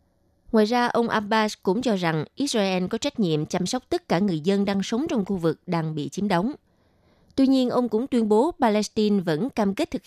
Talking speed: 220 wpm